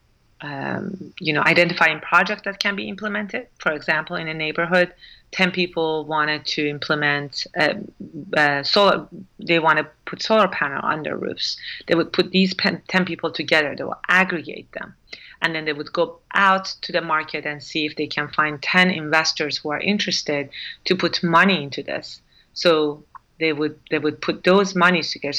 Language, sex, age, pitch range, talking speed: English, female, 30-49, 150-180 Hz, 180 wpm